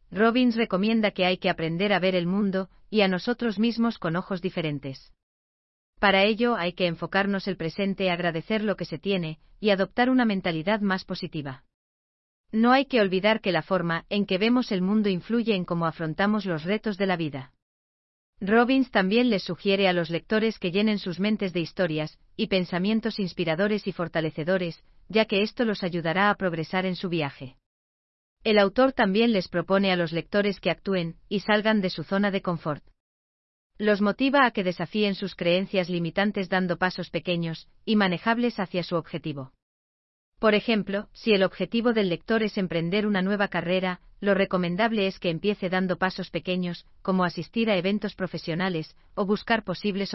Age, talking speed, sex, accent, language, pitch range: 40-59, 175 wpm, female, Spanish, Spanish, 170-210 Hz